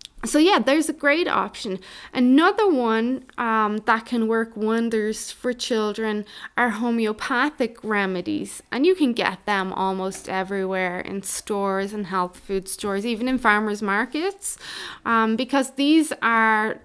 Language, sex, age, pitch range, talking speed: English, female, 20-39, 200-275 Hz, 140 wpm